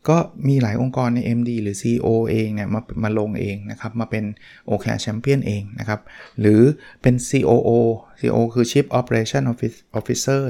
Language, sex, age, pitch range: Thai, male, 20-39, 110-135 Hz